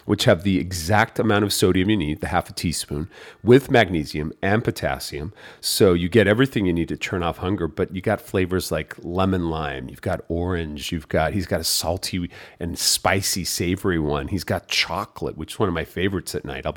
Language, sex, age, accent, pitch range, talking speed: English, male, 40-59, American, 85-110 Hz, 200 wpm